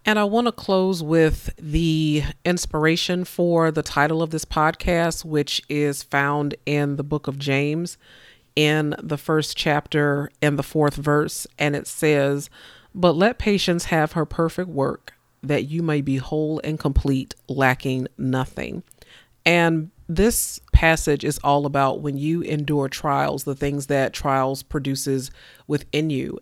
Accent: American